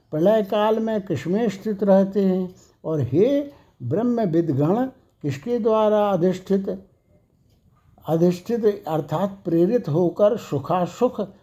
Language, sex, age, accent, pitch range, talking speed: Hindi, male, 60-79, native, 155-210 Hz, 105 wpm